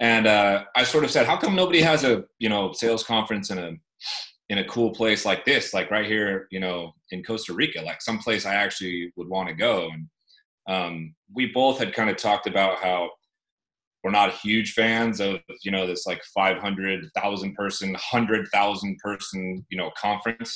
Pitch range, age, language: 95-110 Hz, 30-49, English